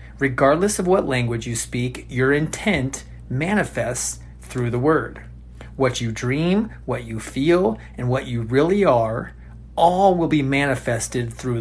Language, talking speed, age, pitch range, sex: English, 145 wpm, 40-59, 115-150 Hz, male